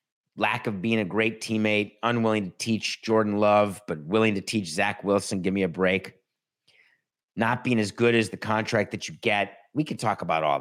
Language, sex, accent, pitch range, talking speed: English, male, American, 110-145 Hz, 205 wpm